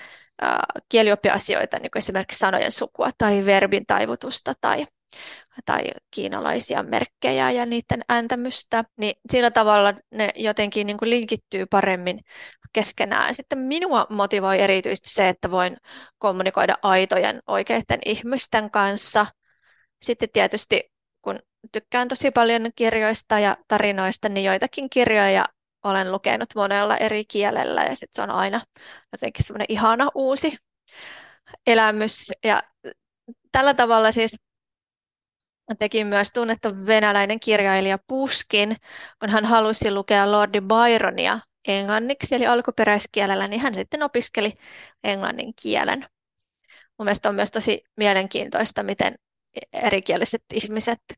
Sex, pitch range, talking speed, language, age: female, 205-235 Hz, 105 wpm, Finnish, 20-39